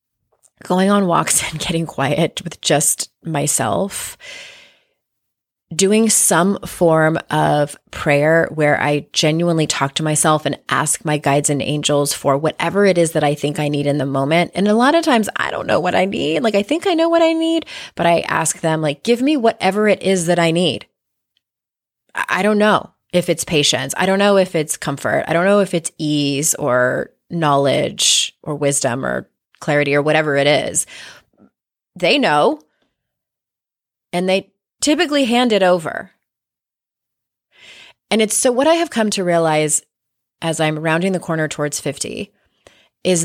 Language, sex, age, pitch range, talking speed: English, female, 20-39, 150-200 Hz, 170 wpm